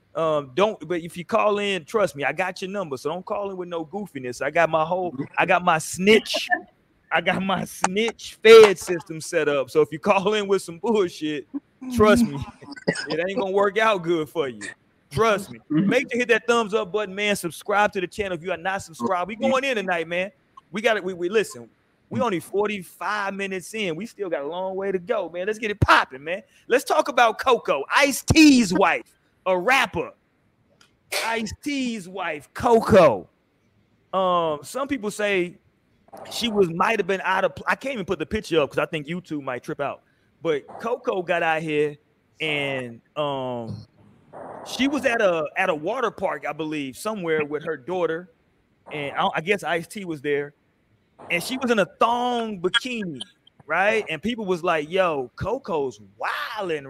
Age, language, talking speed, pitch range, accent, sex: 30-49, English, 195 wpm, 155-215 Hz, American, male